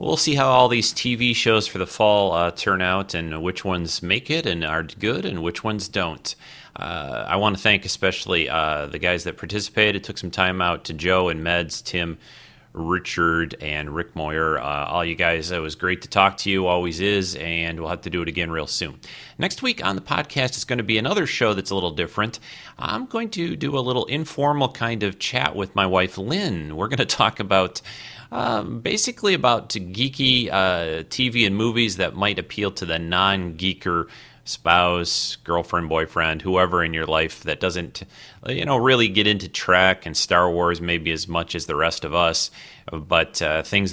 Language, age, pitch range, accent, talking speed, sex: English, 30-49, 85-115 Hz, American, 205 wpm, male